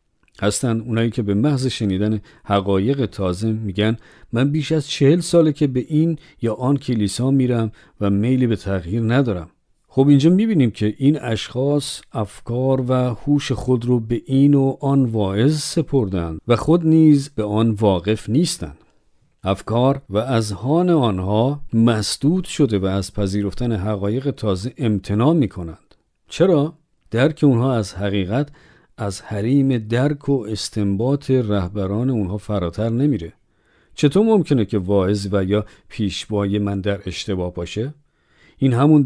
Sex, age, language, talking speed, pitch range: male, 50-69, Persian, 140 wpm, 105-135 Hz